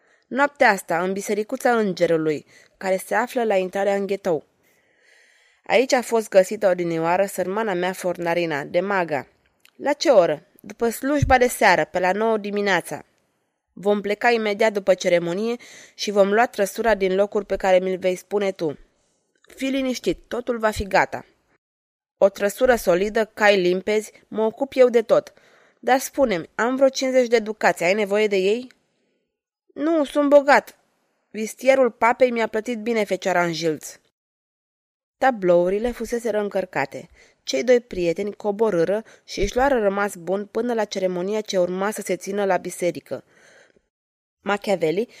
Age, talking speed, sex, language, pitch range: 20-39, 145 wpm, female, Romanian, 185-235 Hz